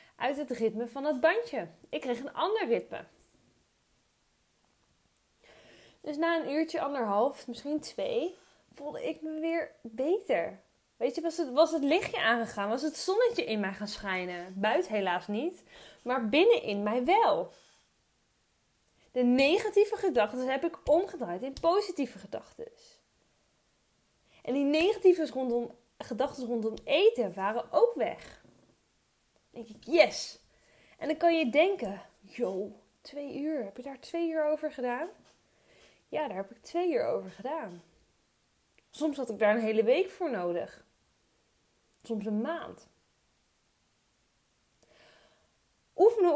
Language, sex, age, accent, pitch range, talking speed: Dutch, female, 20-39, Dutch, 225-335 Hz, 130 wpm